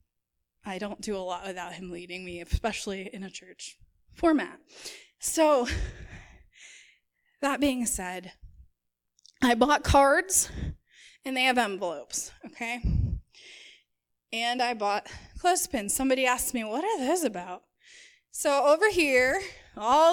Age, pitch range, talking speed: 20-39, 215-285 Hz, 120 wpm